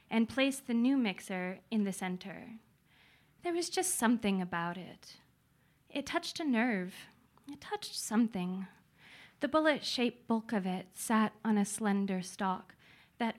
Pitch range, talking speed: 185-225 Hz, 145 wpm